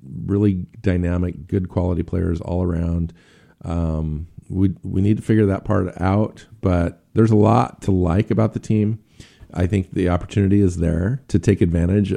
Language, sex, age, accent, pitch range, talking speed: English, male, 50-69, American, 85-105 Hz, 170 wpm